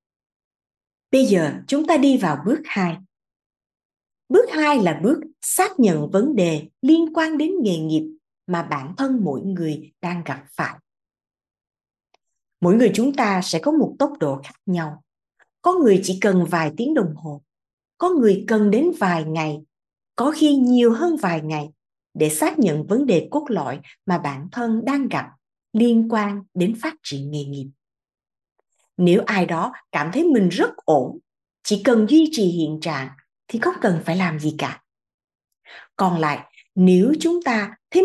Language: Vietnamese